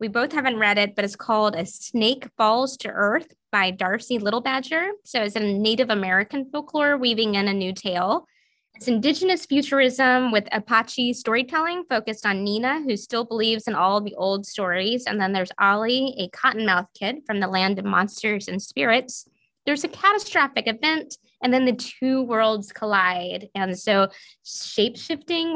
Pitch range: 200-260 Hz